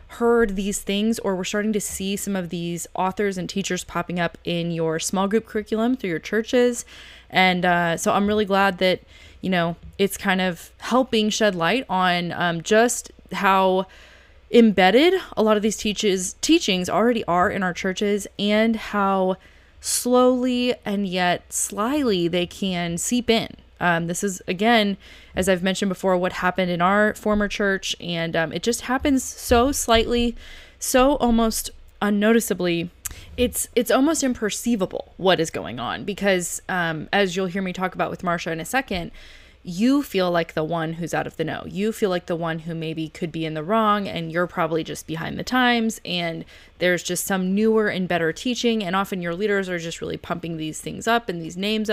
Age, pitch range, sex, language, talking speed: 20-39, 175-220 Hz, female, English, 185 wpm